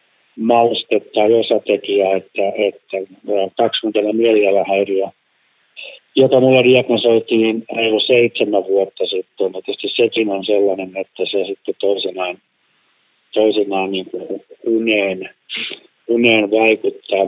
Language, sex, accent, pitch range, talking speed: Finnish, male, native, 95-120 Hz, 90 wpm